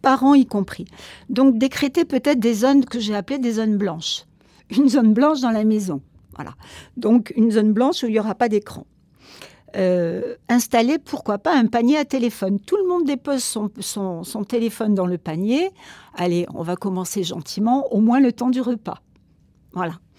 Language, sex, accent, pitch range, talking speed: French, female, French, 190-265 Hz, 185 wpm